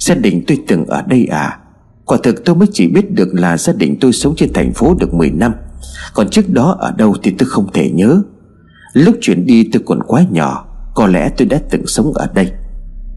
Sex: male